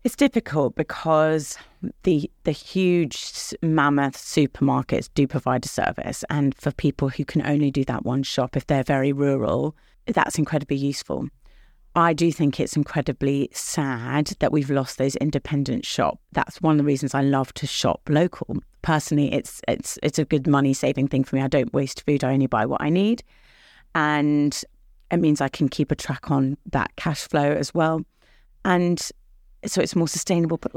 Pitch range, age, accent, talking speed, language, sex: 140-165 Hz, 30-49, British, 180 wpm, English, female